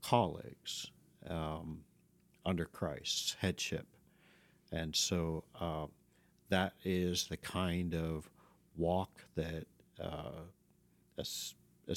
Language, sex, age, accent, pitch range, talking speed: English, male, 50-69, American, 80-110 Hz, 90 wpm